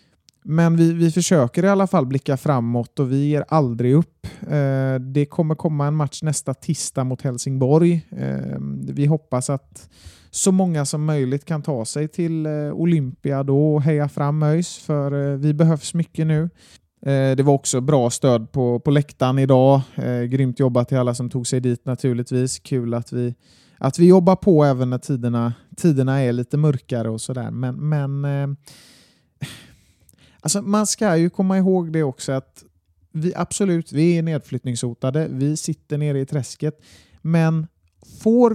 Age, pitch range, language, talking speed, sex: 30-49, 125-155 Hz, Swedish, 170 wpm, male